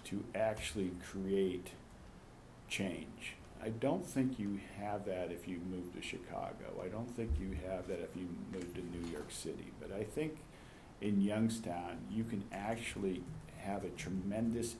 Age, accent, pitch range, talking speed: 50-69, American, 95-110 Hz, 160 wpm